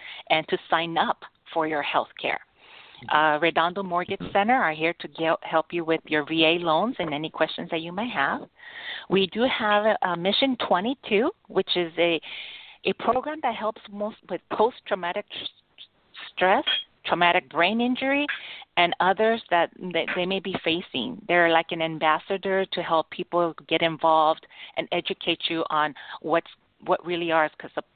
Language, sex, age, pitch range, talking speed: English, female, 40-59, 160-190 Hz, 160 wpm